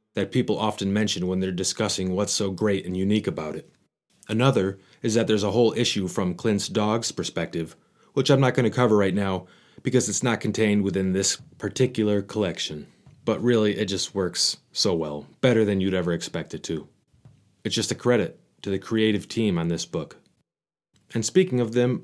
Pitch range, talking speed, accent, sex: 95-115 Hz, 190 wpm, American, male